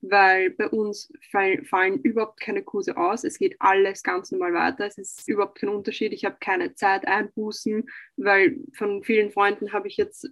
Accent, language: German, German